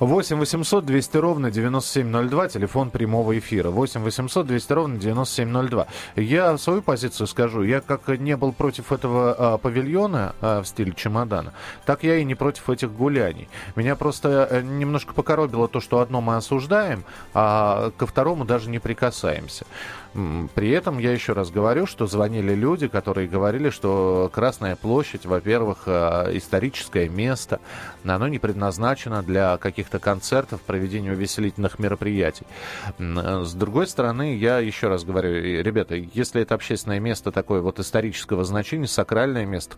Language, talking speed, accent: Russian, 130 wpm, native